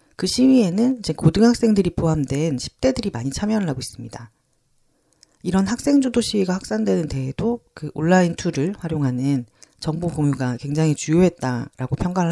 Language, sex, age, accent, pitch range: Korean, female, 40-59, native, 130-190 Hz